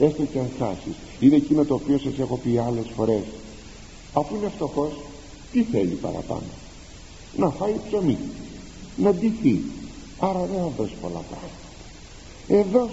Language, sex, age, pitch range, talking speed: Greek, male, 50-69, 120-190 Hz, 140 wpm